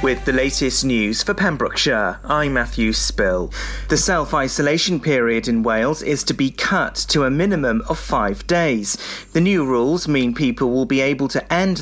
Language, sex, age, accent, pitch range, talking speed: English, male, 30-49, British, 125-155 Hz, 180 wpm